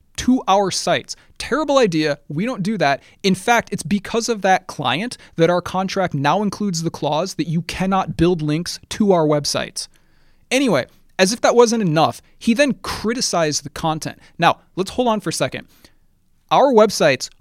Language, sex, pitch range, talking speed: English, male, 155-235 Hz, 175 wpm